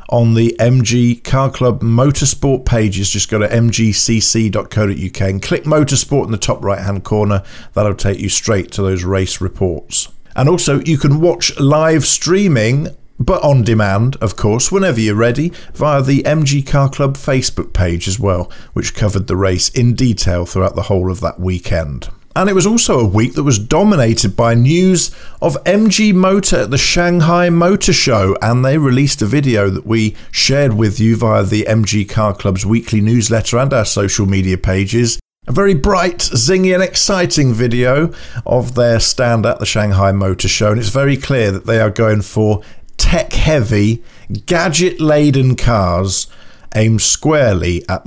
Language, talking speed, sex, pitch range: English, 170 wpm, male, 100-140 Hz